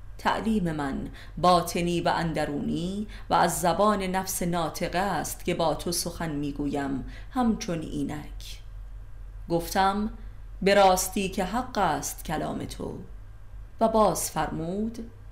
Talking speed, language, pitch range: 110 wpm, Persian, 150-200 Hz